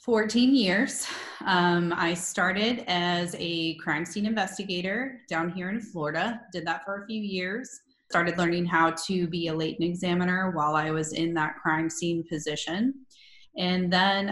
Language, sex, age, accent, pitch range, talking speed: English, female, 30-49, American, 160-195 Hz, 160 wpm